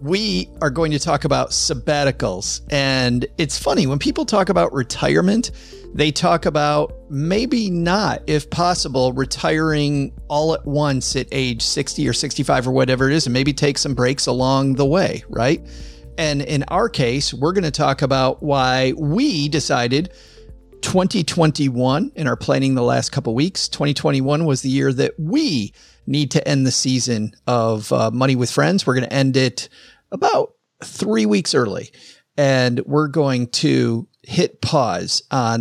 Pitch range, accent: 125-155 Hz, American